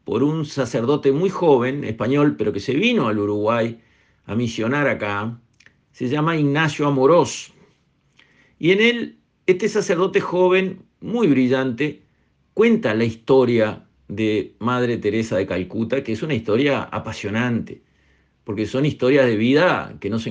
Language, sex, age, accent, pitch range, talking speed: Spanish, male, 50-69, Argentinian, 110-155 Hz, 140 wpm